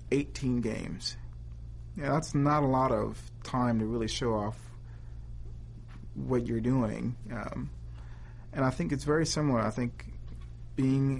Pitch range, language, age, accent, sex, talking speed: 105-120 Hz, English, 40-59, American, male, 135 wpm